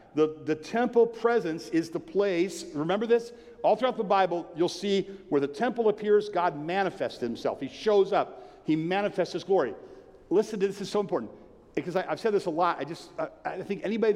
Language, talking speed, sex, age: English, 200 wpm, male, 50-69